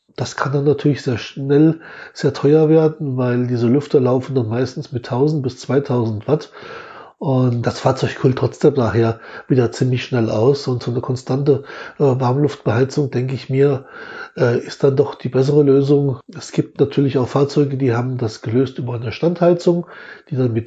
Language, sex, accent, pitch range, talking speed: German, male, German, 125-150 Hz, 170 wpm